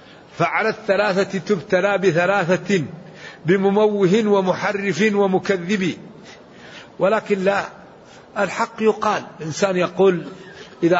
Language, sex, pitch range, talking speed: English, male, 185-220 Hz, 75 wpm